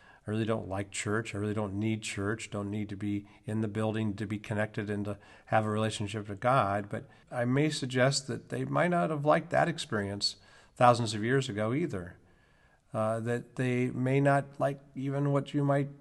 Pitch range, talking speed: 110-140 Hz, 200 wpm